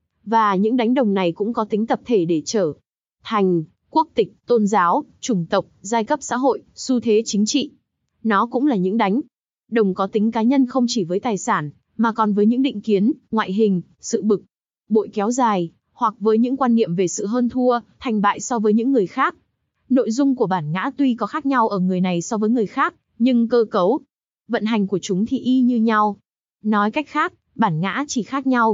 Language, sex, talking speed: Vietnamese, female, 220 wpm